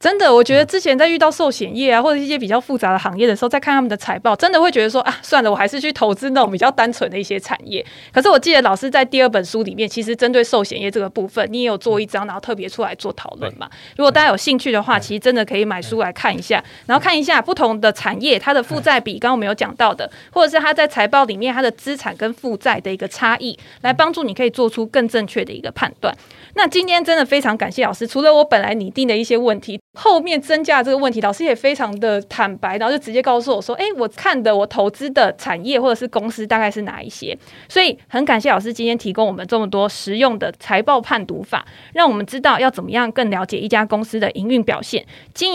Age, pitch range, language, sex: 20-39, 210-275 Hz, Chinese, female